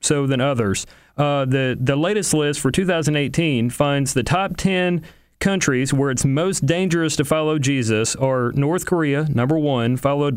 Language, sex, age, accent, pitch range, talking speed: English, male, 40-59, American, 130-165 Hz, 160 wpm